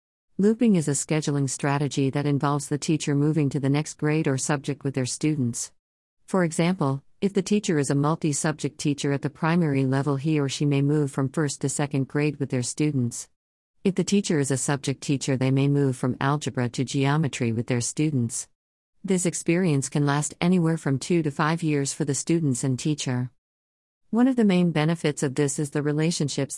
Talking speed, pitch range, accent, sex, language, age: 195 wpm, 135-155 Hz, American, female, English, 50-69